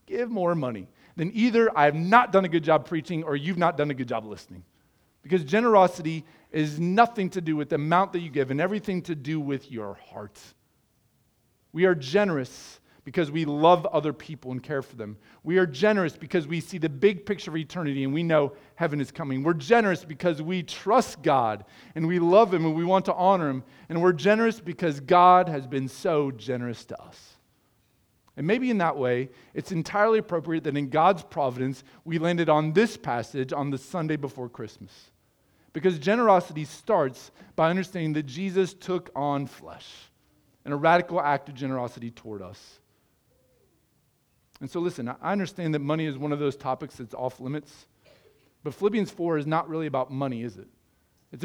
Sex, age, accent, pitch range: male, 40-59, American, 140-180 Hz